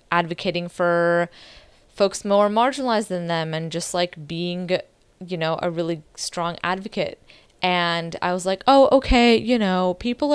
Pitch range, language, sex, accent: 165-190 Hz, English, female, American